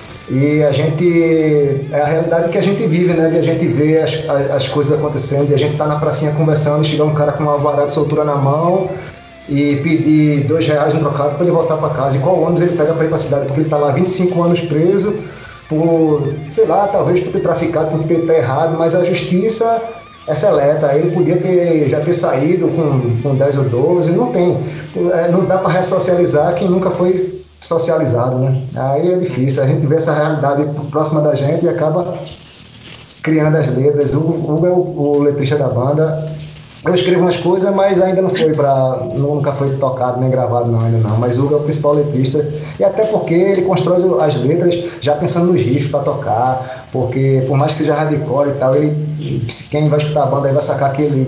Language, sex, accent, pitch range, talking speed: Portuguese, male, Brazilian, 140-170 Hz, 210 wpm